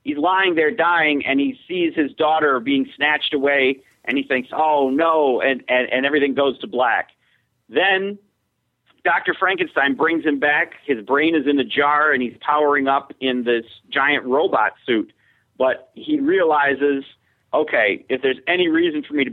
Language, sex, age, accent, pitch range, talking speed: English, male, 40-59, American, 130-165 Hz, 175 wpm